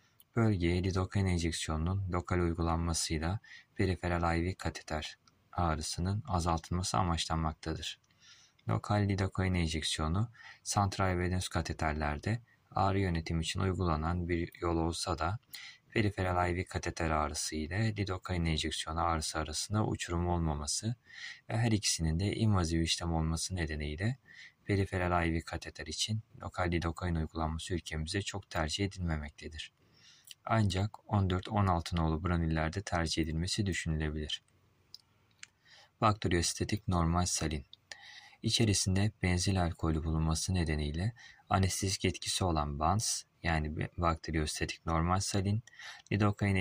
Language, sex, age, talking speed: Turkish, male, 30-49, 100 wpm